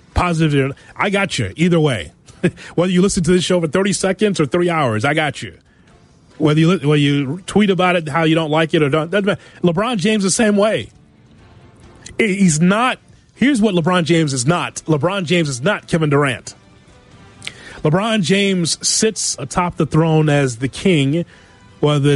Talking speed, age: 175 wpm, 30-49